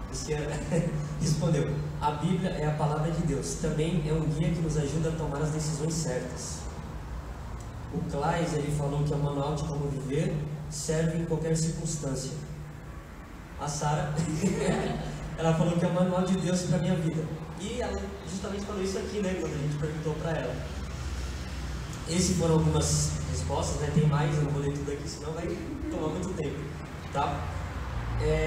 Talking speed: 170 wpm